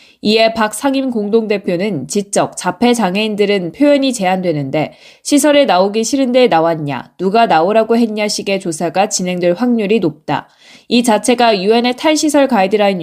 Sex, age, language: female, 20-39, Korean